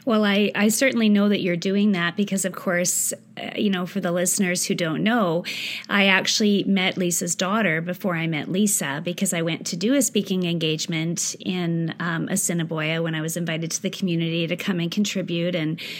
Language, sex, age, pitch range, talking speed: English, female, 30-49, 170-195 Hz, 200 wpm